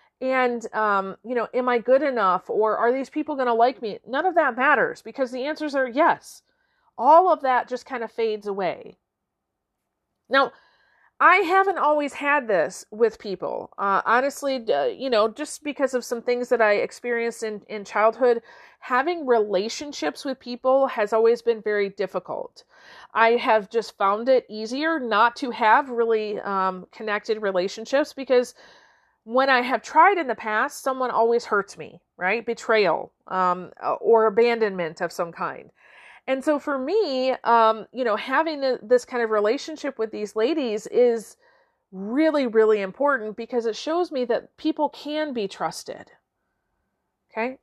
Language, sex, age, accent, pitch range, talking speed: English, female, 40-59, American, 220-280 Hz, 160 wpm